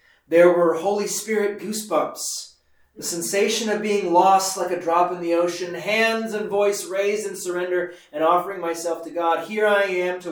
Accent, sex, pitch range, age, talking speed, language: American, male, 145-175 Hz, 30-49, 180 wpm, English